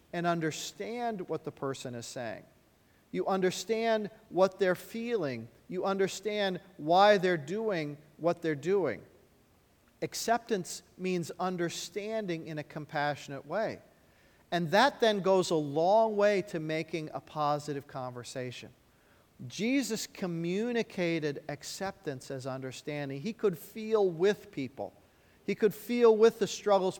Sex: male